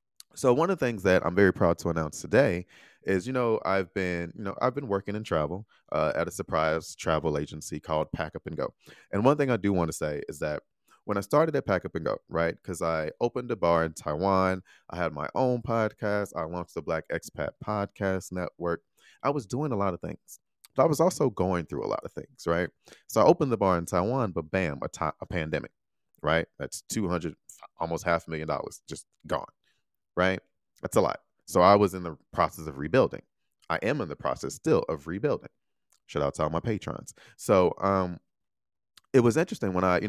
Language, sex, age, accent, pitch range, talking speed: English, male, 30-49, American, 80-105 Hz, 220 wpm